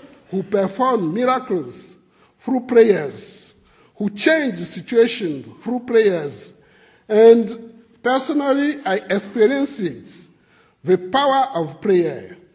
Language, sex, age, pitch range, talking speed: English, male, 50-69, 185-250 Hz, 85 wpm